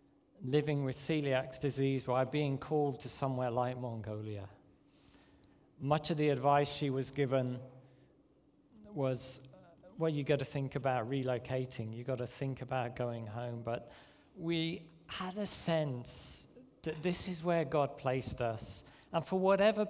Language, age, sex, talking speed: English, 40-59, male, 145 wpm